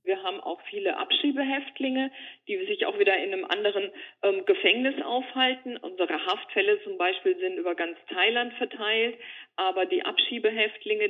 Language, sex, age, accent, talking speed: German, female, 50-69, German, 145 wpm